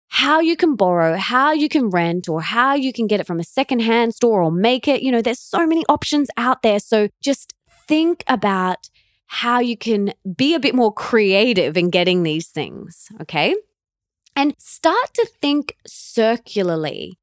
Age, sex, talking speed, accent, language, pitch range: 20-39, female, 180 wpm, Australian, English, 200-290 Hz